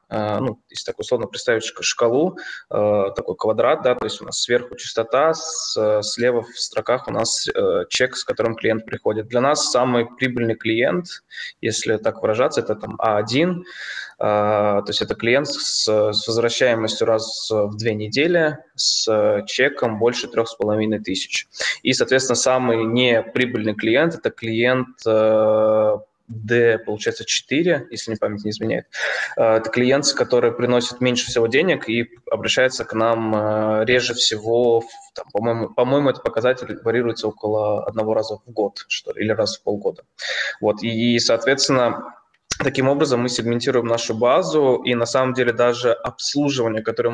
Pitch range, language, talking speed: 110-125 Hz, Russian, 140 wpm